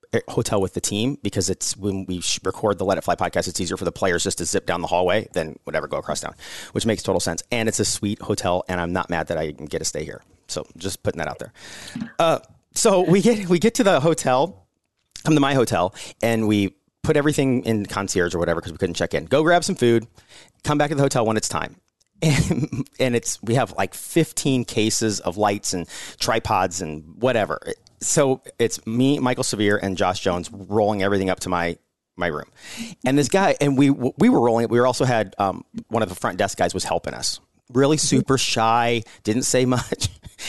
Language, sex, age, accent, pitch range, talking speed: English, male, 30-49, American, 100-140 Hz, 225 wpm